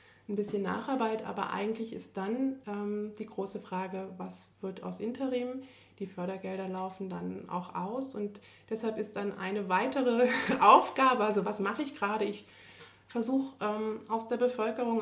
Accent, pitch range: German, 190-220 Hz